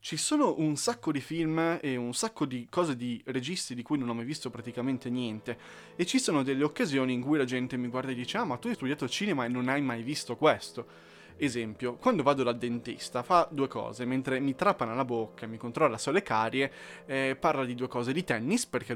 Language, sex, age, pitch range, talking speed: Italian, male, 20-39, 125-160 Hz, 225 wpm